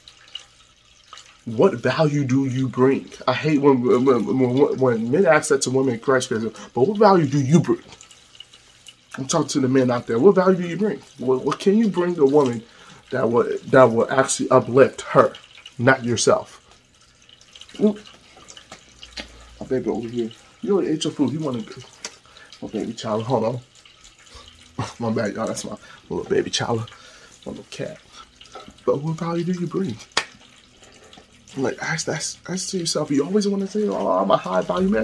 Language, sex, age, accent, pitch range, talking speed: English, male, 30-49, American, 120-165 Hz, 180 wpm